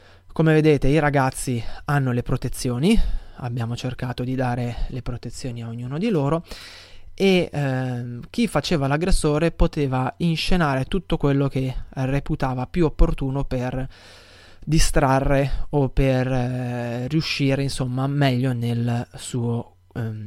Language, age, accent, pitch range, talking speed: Italian, 20-39, native, 125-155 Hz, 120 wpm